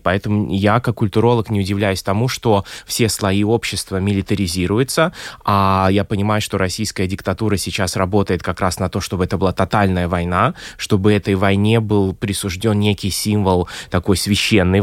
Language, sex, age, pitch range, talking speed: Russian, male, 20-39, 95-120 Hz, 155 wpm